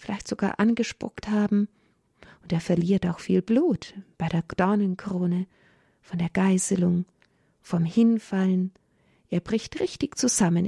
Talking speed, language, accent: 125 wpm, German, German